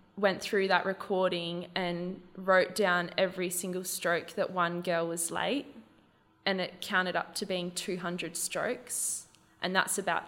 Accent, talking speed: Australian, 150 wpm